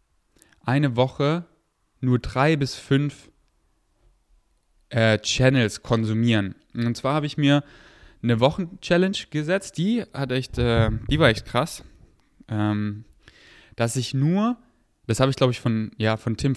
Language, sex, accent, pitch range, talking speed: German, male, German, 120-155 Hz, 140 wpm